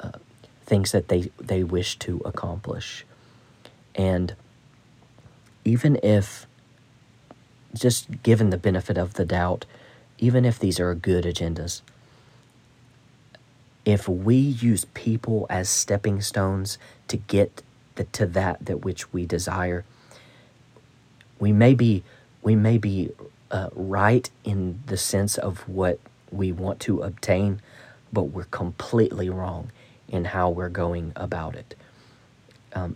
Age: 40-59